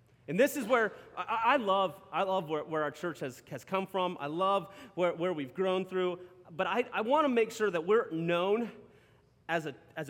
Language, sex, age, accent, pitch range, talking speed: English, male, 30-49, American, 180-235 Hz, 180 wpm